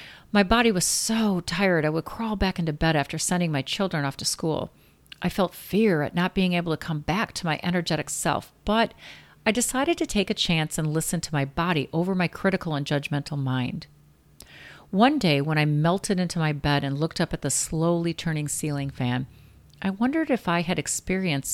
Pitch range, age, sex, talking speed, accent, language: 150-185 Hz, 40-59, female, 205 wpm, American, English